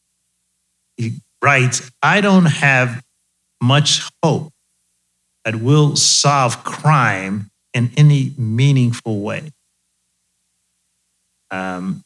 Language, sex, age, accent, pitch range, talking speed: English, male, 50-69, American, 90-140 Hz, 80 wpm